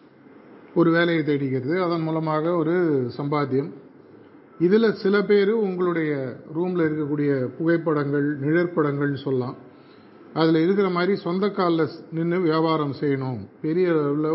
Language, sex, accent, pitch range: Tamil, male, native, 145-180 Hz